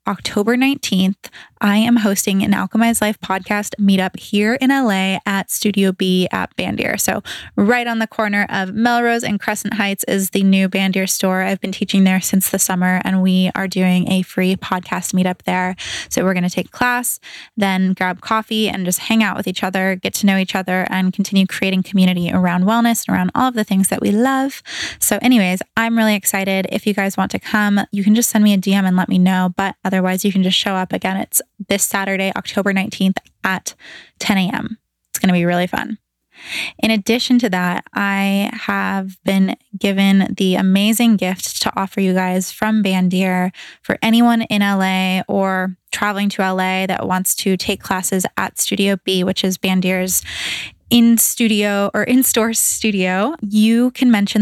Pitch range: 185-215 Hz